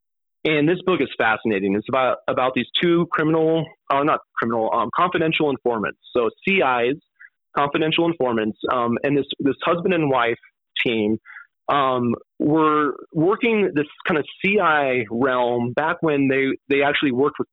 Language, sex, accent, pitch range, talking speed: English, male, American, 130-160 Hz, 155 wpm